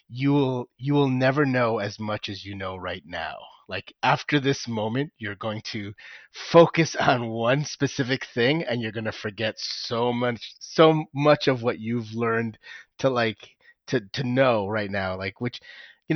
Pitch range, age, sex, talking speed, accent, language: 105-130 Hz, 30-49, male, 175 wpm, American, English